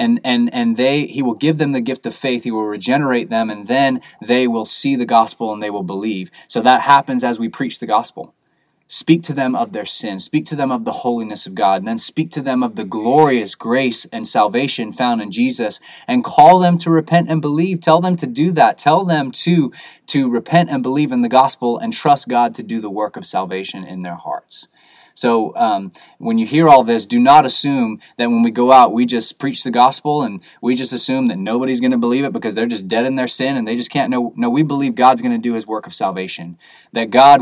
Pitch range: 120-160 Hz